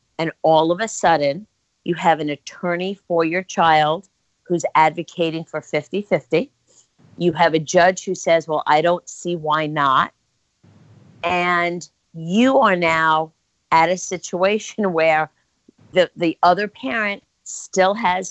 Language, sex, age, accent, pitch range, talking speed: English, female, 50-69, American, 160-195 Hz, 140 wpm